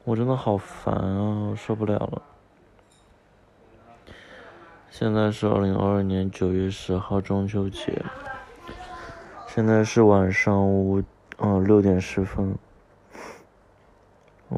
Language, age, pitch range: Chinese, 20-39, 95-110 Hz